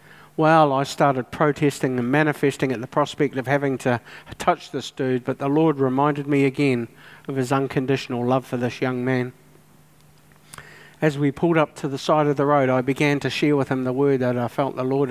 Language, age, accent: English, 50-69, Australian